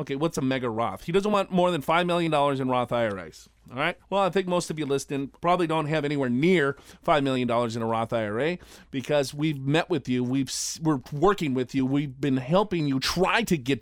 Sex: male